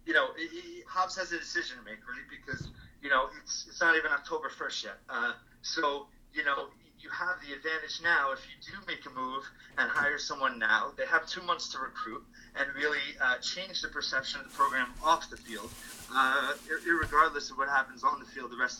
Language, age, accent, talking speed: English, 30-49, American, 215 wpm